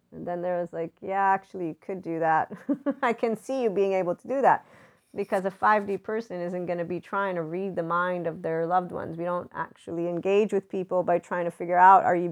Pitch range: 175-205 Hz